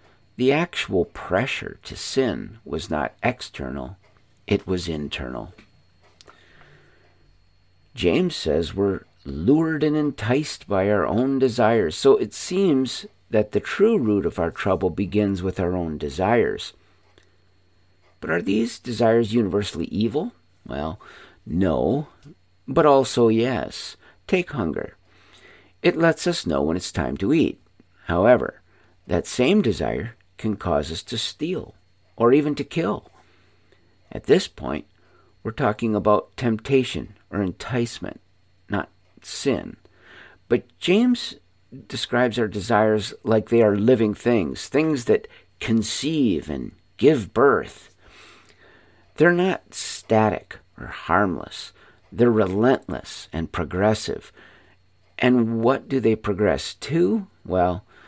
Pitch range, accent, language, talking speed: 90-125 Hz, American, English, 120 wpm